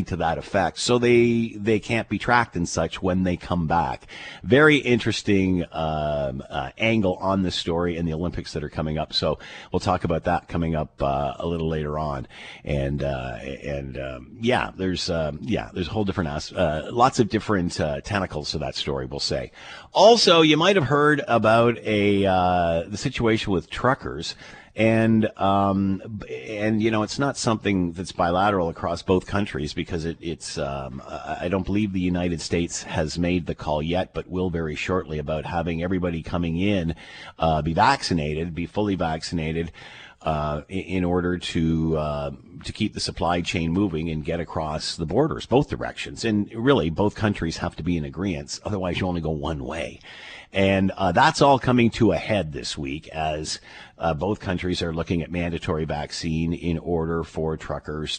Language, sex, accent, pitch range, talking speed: English, male, American, 80-100 Hz, 180 wpm